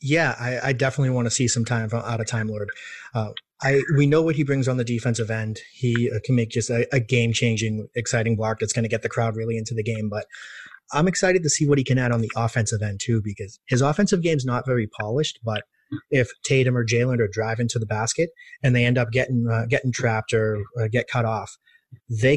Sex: male